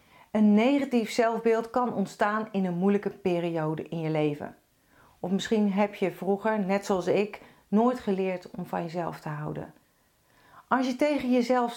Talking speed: 160 wpm